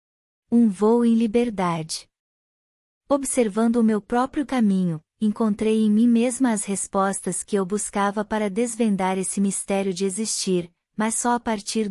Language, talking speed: Portuguese, 140 wpm